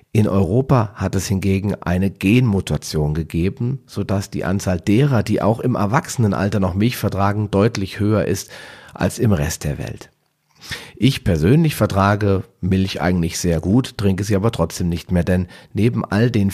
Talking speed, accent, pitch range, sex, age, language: 165 wpm, German, 90-110 Hz, male, 40-59, German